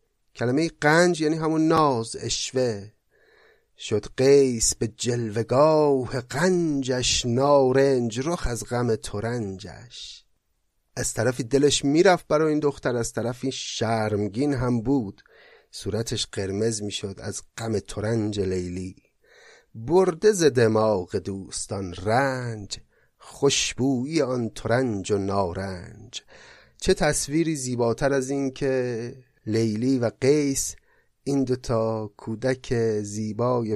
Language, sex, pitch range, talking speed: Persian, male, 105-135 Hz, 105 wpm